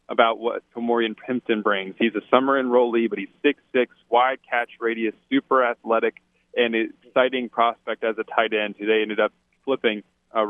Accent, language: American, English